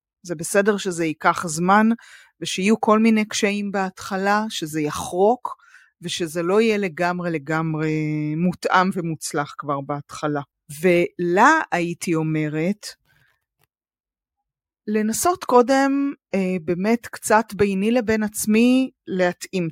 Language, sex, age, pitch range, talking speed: Hebrew, female, 30-49, 170-230 Hz, 100 wpm